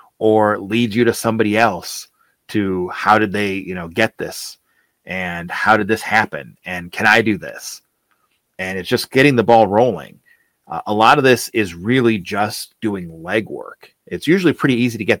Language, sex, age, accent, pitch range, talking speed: English, male, 30-49, American, 100-125 Hz, 185 wpm